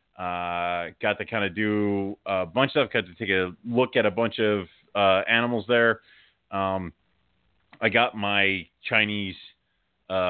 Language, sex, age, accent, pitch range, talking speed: English, male, 30-49, American, 90-115 Hz, 165 wpm